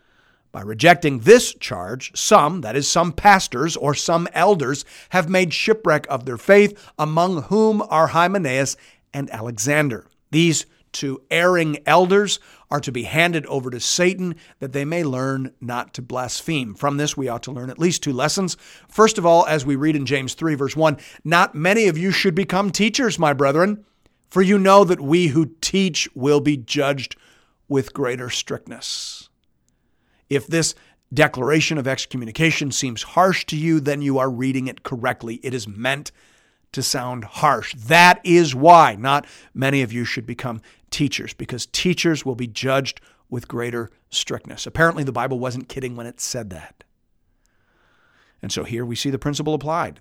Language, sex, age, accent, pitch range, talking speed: English, male, 50-69, American, 130-170 Hz, 170 wpm